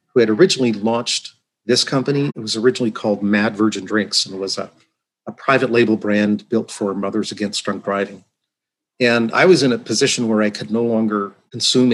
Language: English